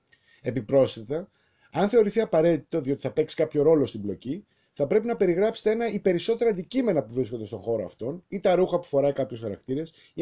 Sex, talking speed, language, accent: male, 190 wpm, Greek, native